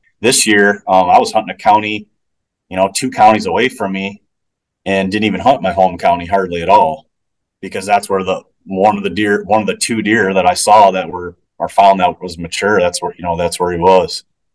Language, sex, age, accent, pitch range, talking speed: English, male, 30-49, American, 90-105 Hz, 230 wpm